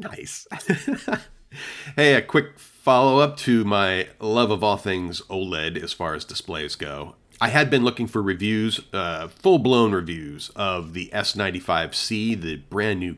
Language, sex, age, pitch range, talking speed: English, male, 40-59, 95-130 Hz, 140 wpm